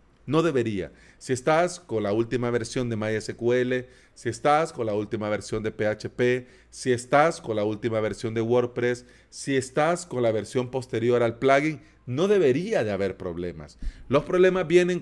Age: 40-59